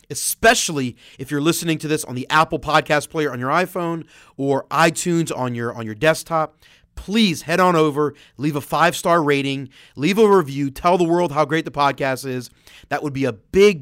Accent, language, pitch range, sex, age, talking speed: American, English, 130-165 Hz, male, 30-49, 195 wpm